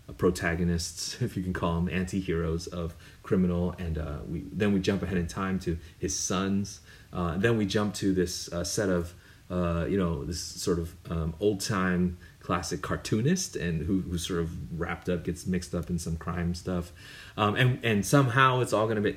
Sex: male